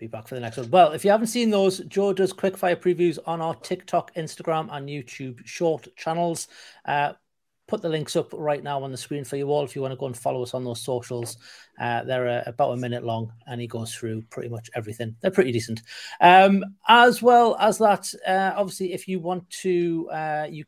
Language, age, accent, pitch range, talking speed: English, 30-49, British, 125-180 Hz, 230 wpm